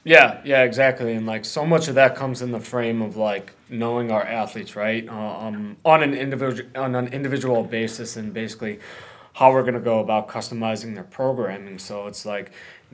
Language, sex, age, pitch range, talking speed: English, male, 20-39, 105-120 Hz, 195 wpm